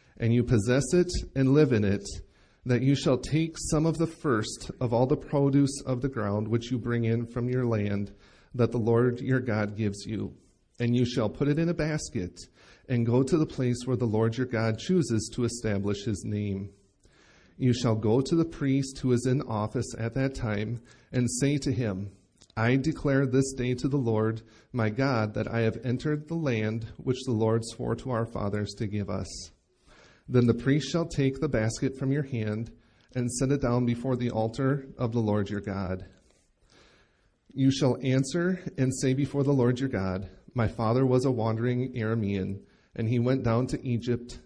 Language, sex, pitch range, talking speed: English, male, 110-135 Hz, 195 wpm